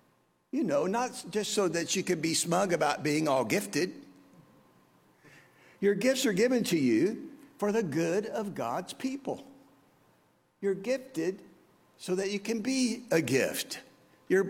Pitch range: 160-235 Hz